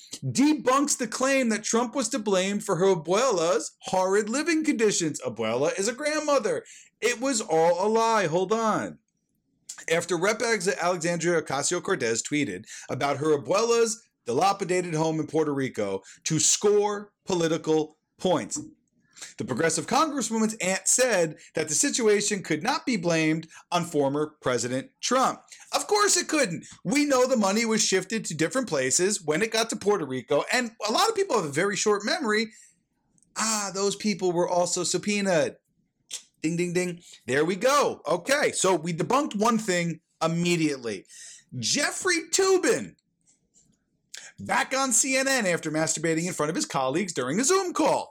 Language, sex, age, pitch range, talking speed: English, male, 40-59, 170-270 Hz, 150 wpm